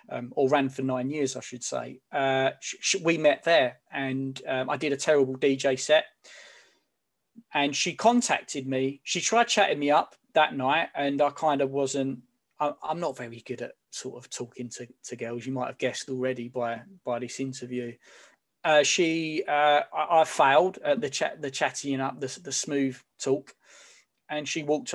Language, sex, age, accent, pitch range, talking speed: English, male, 20-39, British, 130-185 Hz, 190 wpm